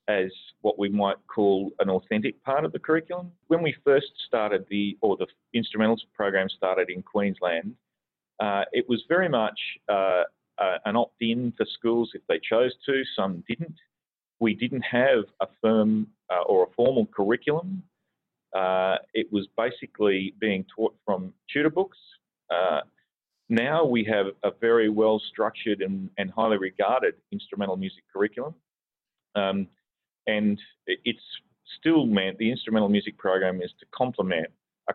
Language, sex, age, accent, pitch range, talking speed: English, male, 40-59, Australian, 100-130 Hz, 150 wpm